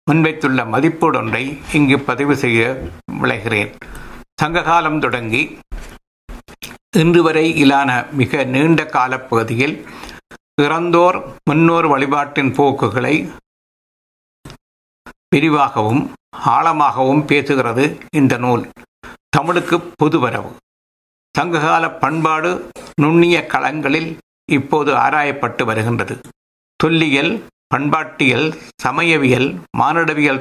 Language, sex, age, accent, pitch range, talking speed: Tamil, male, 60-79, native, 130-160 Hz, 75 wpm